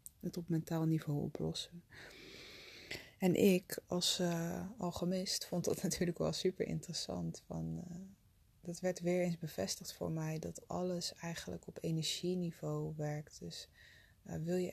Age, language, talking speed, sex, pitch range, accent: 20-39, Dutch, 145 wpm, female, 150-180 Hz, Dutch